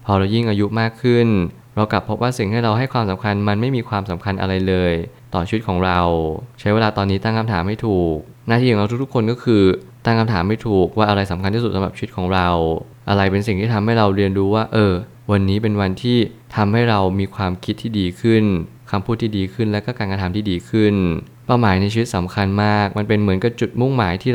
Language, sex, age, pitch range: Thai, male, 20-39, 95-115 Hz